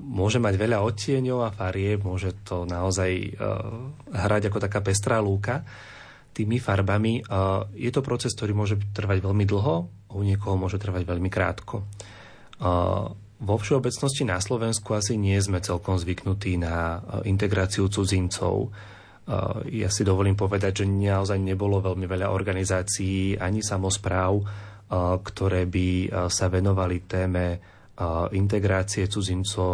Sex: male